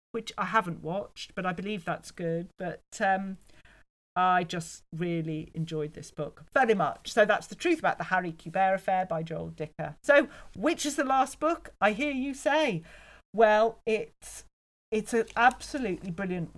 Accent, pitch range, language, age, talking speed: British, 165-220 Hz, English, 40-59, 170 wpm